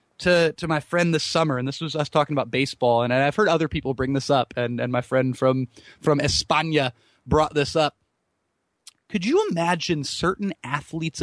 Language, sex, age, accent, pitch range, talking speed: English, male, 20-39, American, 130-200 Hz, 190 wpm